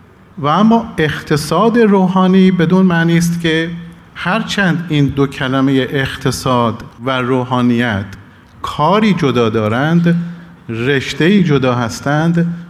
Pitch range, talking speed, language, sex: 140-185 Hz, 100 wpm, Persian, male